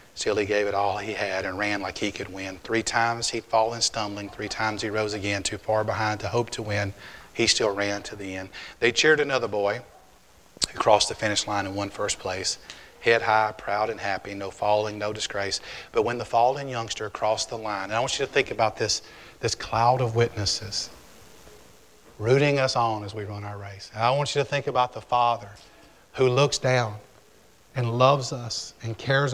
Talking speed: 210 wpm